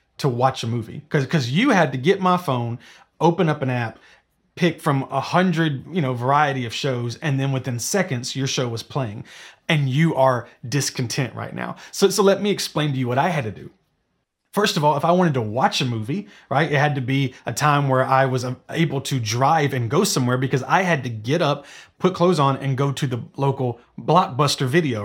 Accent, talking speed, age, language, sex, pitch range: American, 215 wpm, 30-49, English, male, 135-170 Hz